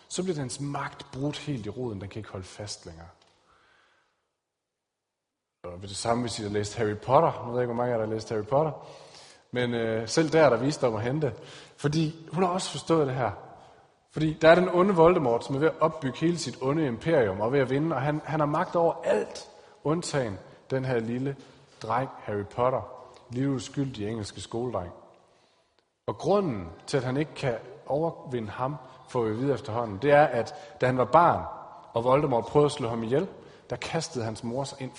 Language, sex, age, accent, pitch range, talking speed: Danish, male, 30-49, native, 115-150 Hz, 210 wpm